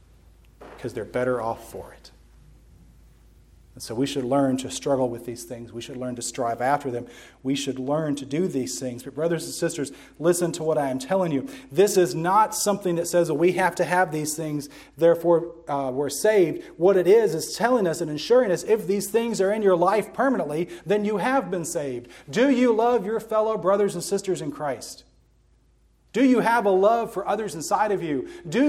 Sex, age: male, 40-59